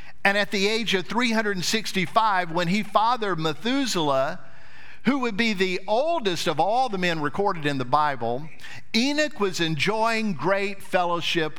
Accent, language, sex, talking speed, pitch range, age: American, English, male, 145 wpm, 175-245 Hz, 50-69